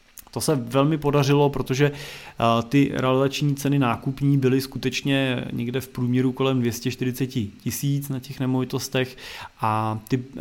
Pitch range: 120-135 Hz